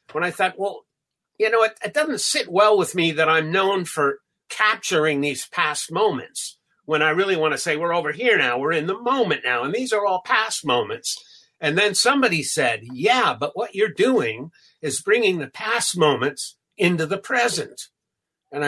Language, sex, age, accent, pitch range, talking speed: English, male, 50-69, American, 155-215 Hz, 195 wpm